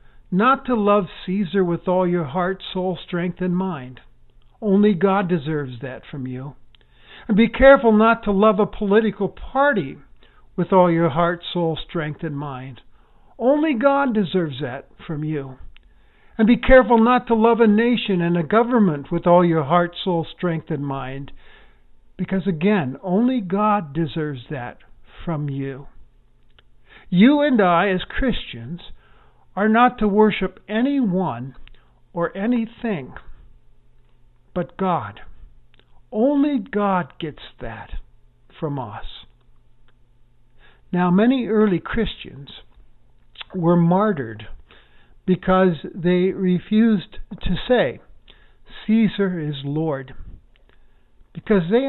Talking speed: 120 wpm